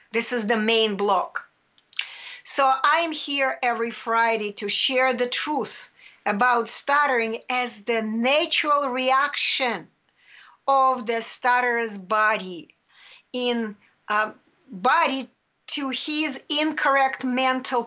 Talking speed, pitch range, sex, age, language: 95 wpm, 225-285 Hz, female, 50-69, English